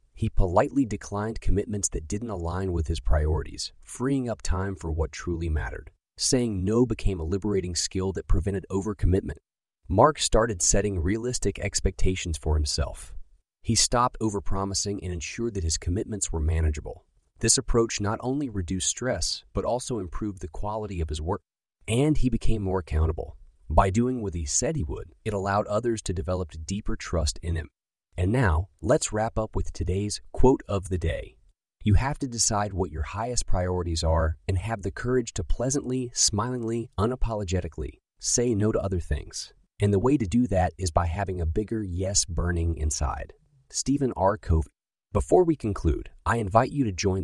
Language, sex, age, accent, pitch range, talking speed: English, male, 30-49, American, 85-110 Hz, 175 wpm